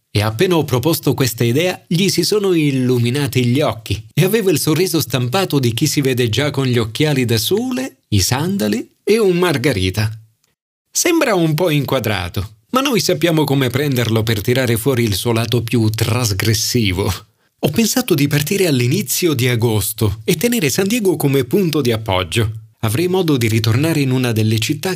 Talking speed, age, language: 175 wpm, 40-59, Italian